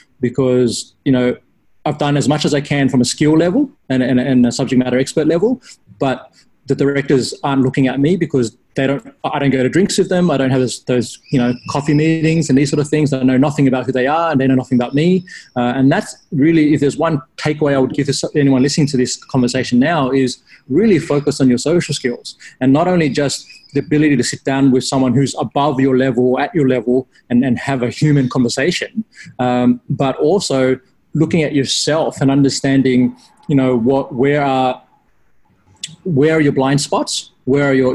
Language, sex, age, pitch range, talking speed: English, male, 20-39, 130-150 Hz, 215 wpm